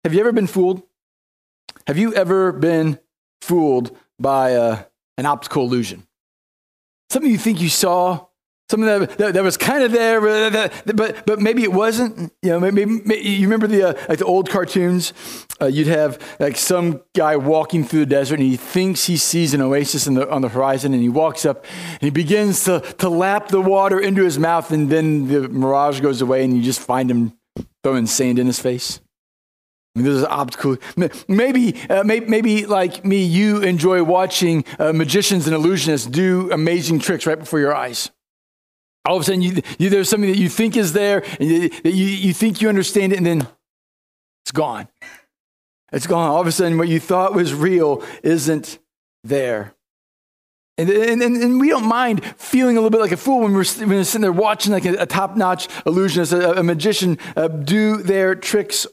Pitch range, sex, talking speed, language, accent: 145-195 Hz, male, 200 wpm, English, American